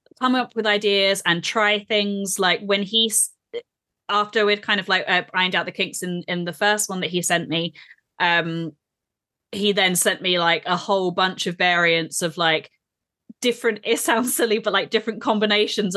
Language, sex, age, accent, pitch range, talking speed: English, female, 20-39, British, 165-210 Hz, 190 wpm